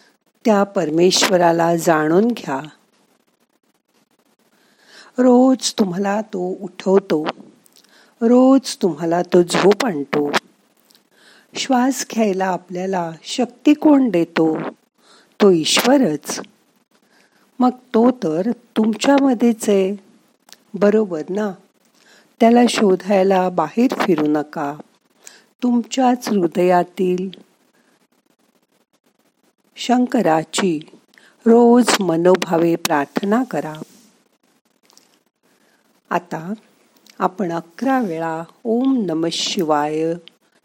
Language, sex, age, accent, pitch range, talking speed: Marathi, female, 50-69, native, 165-235 Hz, 70 wpm